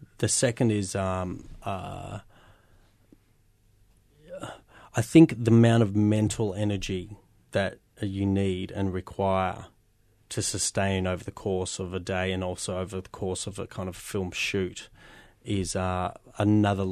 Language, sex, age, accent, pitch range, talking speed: English, male, 30-49, Australian, 95-110 Hz, 140 wpm